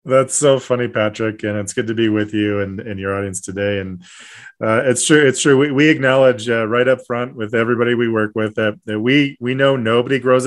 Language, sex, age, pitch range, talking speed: English, male, 30-49, 100-125 Hz, 235 wpm